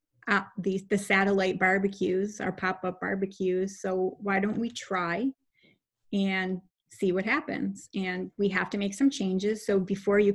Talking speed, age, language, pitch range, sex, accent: 155 wpm, 30-49, English, 185-210 Hz, female, American